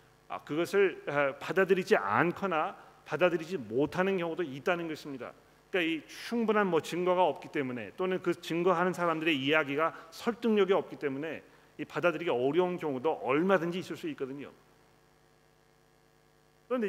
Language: Korean